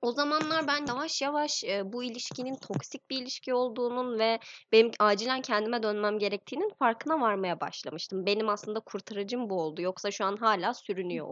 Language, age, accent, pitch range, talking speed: Turkish, 20-39, native, 200-290 Hz, 160 wpm